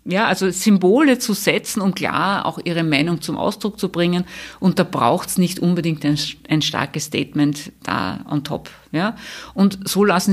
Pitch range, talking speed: 160-195 Hz, 180 wpm